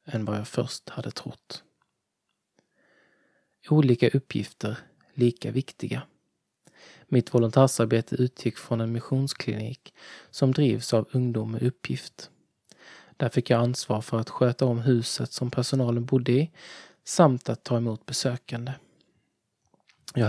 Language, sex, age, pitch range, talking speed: Swedish, male, 20-39, 115-135 Hz, 120 wpm